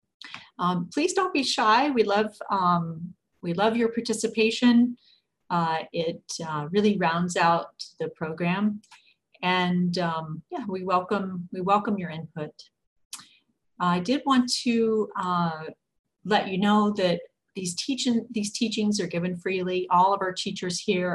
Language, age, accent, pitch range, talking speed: English, 40-59, American, 175-215 Hz, 140 wpm